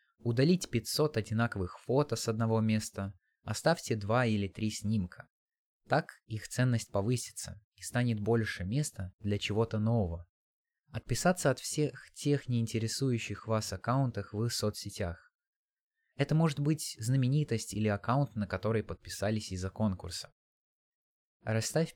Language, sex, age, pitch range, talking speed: Russian, male, 20-39, 100-135 Hz, 120 wpm